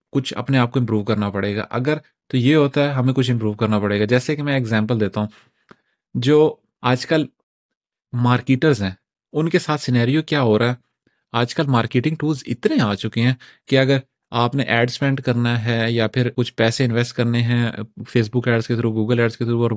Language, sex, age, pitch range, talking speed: Urdu, male, 30-49, 115-145 Hz, 215 wpm